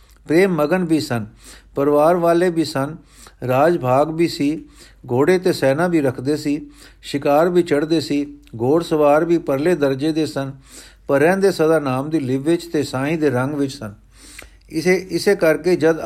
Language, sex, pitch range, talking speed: Punjabi, male, 140-170 Hz, 170 wpm